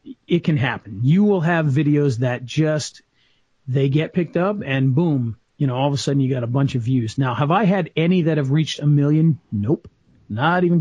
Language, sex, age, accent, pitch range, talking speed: English, male, 40-59, American, 130-160 Hz, 220 wpm